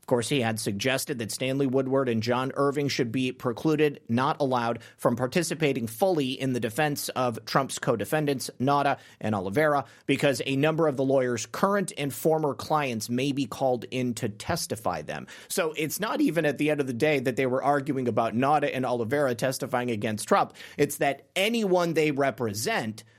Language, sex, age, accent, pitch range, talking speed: English, male, 30-49, American, 120-155 Hz, 185 wpm